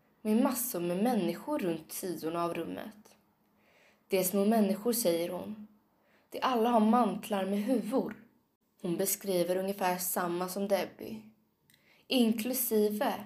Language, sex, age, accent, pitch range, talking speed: Swedish, female, 20-39, native, 180-220 Hz, 120 wpm